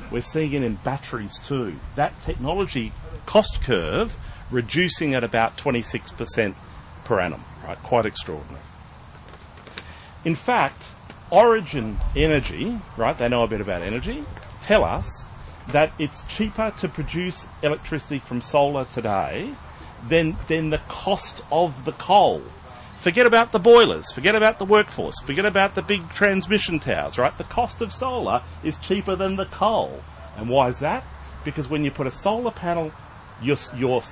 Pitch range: 100-165 Hz